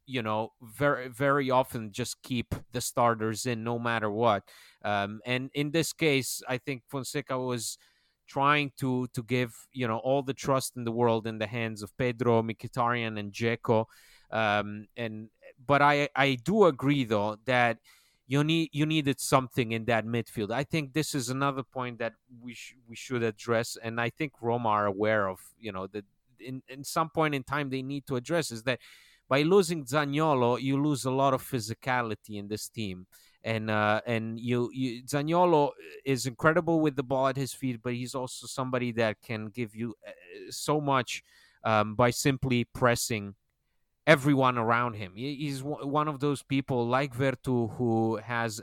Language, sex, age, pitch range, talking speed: English, male, 30-49, 110-135 Hz, 180 wpm